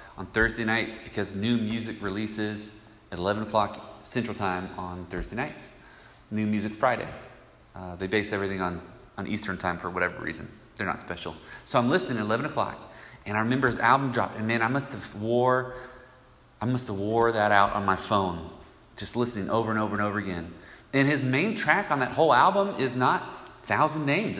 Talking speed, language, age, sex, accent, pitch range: 185 wpm, English, 30-49, male, American, 105-130 Hz